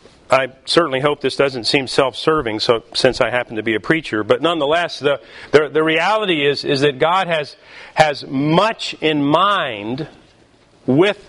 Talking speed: 165 wpm